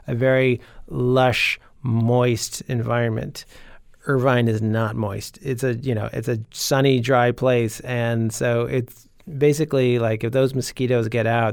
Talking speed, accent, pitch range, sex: 145 wpm, American, 115-135 Hz, male